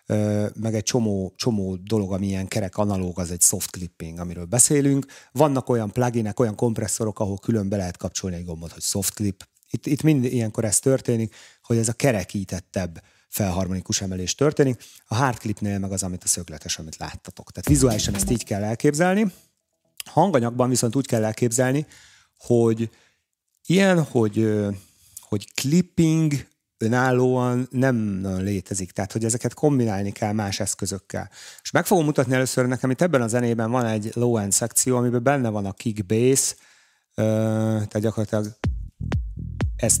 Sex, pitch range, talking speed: male, 95-125 Hz, 150 wpm